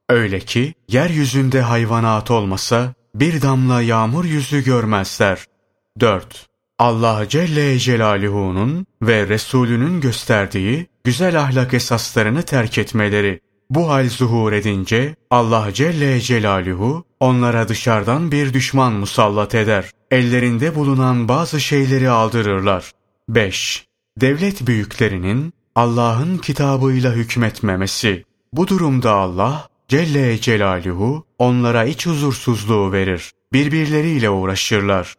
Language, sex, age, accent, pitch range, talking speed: Turkish, male, 30-49, native, 105-135 Hz, 95 wpm